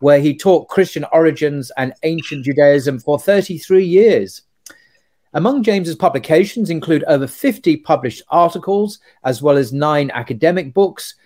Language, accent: English, British